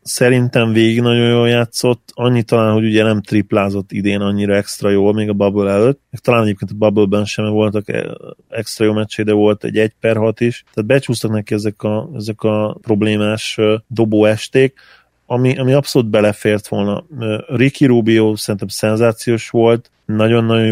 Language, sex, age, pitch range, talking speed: Hungarian, male, 30-49, 105-115 Hz, 160 wpm